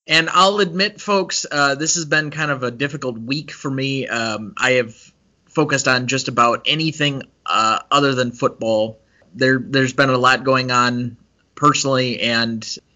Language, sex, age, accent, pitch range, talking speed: English, male, 30-49, American, 110-130 Hz, 170 wpm